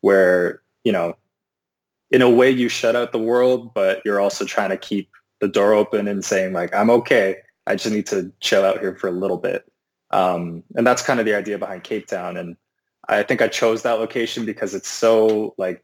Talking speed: 215 wpm